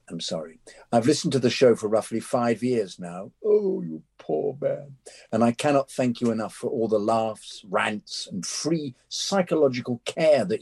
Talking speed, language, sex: 180 wpm, English, male